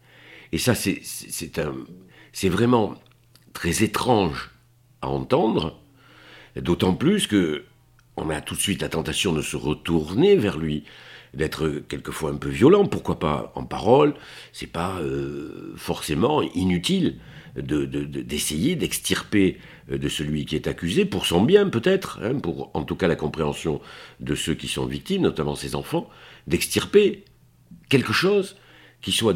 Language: French